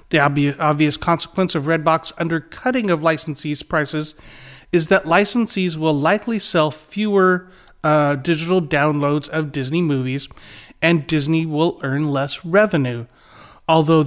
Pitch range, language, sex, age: 145-180 Hz, English, male, 30-49